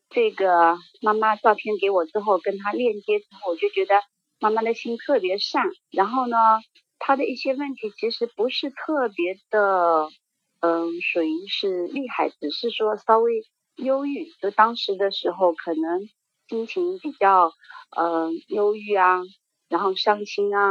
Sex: female